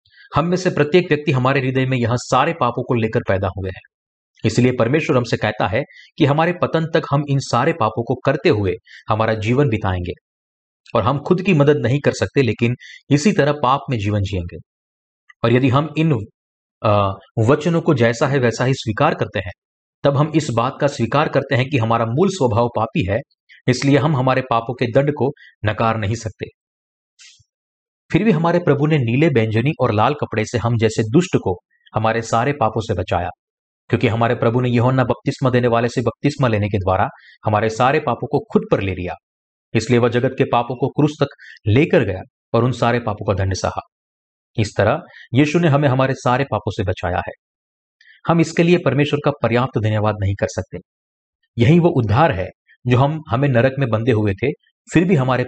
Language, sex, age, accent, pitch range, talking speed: Hindi, male, 40-59, native, 110-145 Hz, 200 wpm